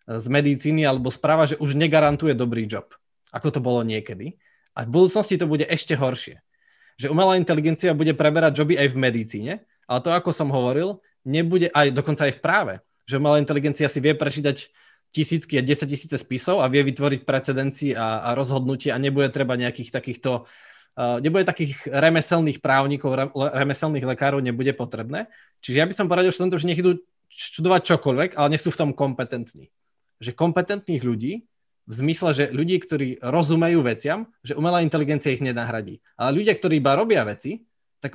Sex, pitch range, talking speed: male, 135-165 Hz, 175 wpm